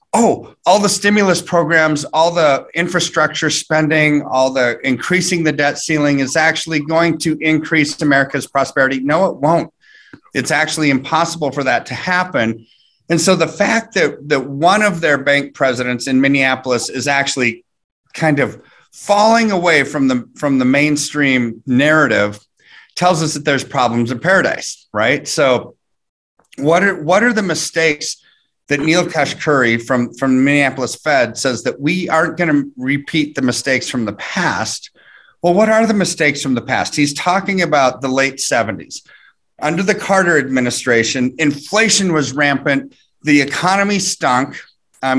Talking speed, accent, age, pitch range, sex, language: 155 wpm, American, 30-49, 135-165 Hz, male, English